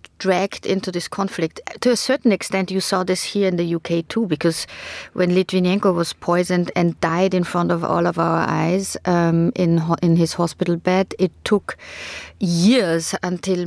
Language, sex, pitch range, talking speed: English, female, 170-190 Hz, 180 wpm